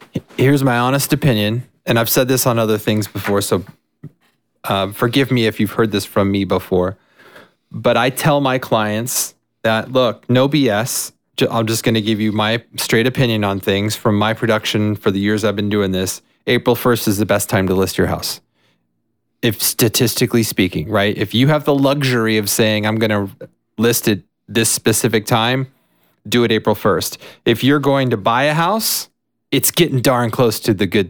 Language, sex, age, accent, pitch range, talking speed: English, male, 30-49, American, 105-135 Hz, 195 wpm